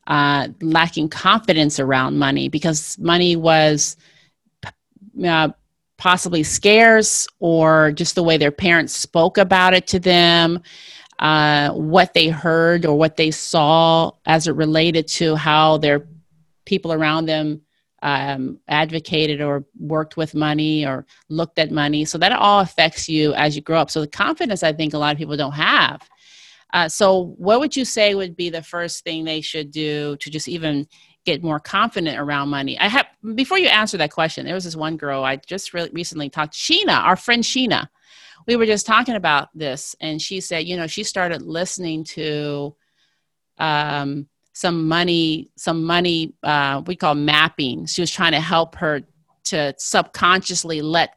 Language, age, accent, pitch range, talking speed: English, 30-49, American, 150-175 Hz, 170 wpm